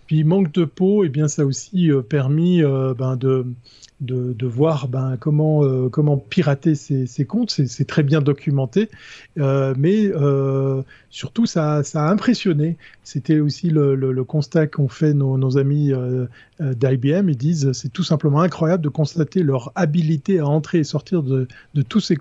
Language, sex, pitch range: French, male, 135-160 Hz